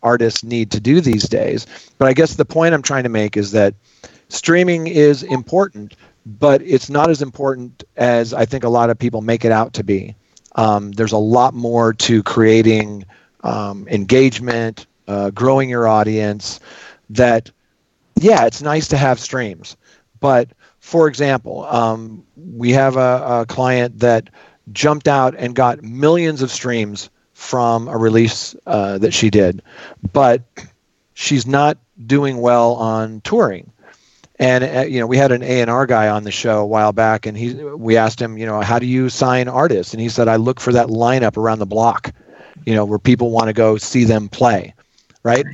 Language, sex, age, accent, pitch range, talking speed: English, male, 40-59, American, 110-135 Hz, 185 wpm